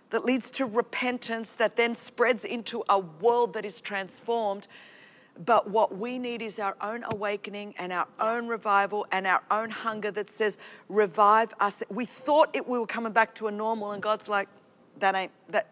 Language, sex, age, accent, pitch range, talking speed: English, female, 40-59, Australian, 205-245 Hz, 185 wpm